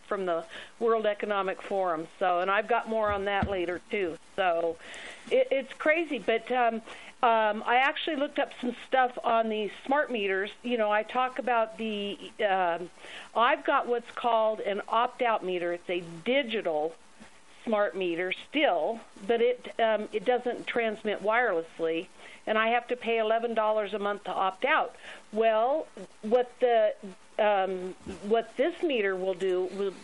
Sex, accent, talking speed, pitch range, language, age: female, American, 160 wpm, 205-250 Hz, English, 50-69